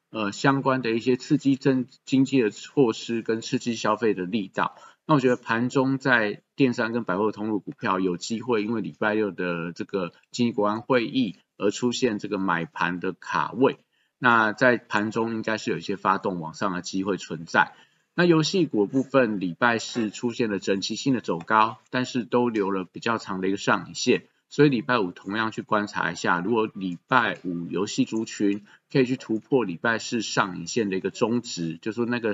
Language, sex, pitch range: Chinese, male, 100-125 Hz